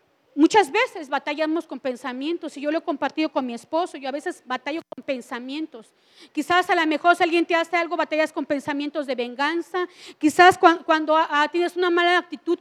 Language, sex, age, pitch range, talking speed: Spanish, female, 40-59, 300-355 Hz, 185 wpm